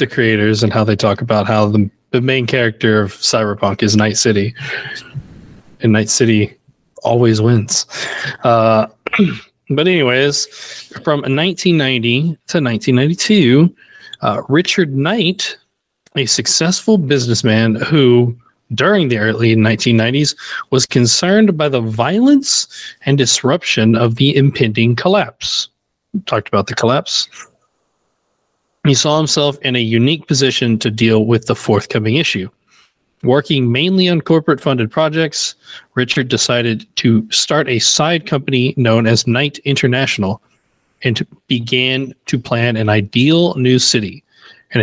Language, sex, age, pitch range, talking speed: English, male, 20-39, 115-150 Hz, 125 wpm